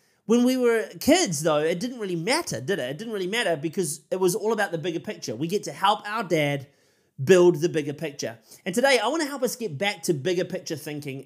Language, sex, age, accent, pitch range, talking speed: English, male, 30-49, Australian, 155-190 Hz, 245 wpm